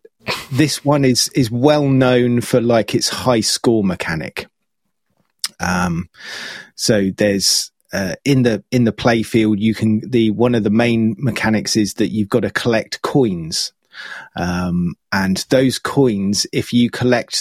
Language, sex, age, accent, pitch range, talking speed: English, male, 30-49, British, 100-125 Hz, 150 wpm